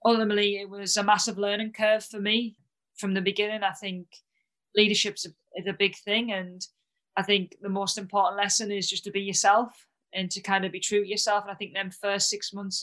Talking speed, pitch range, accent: 215 wpm, 190-205 Hz, British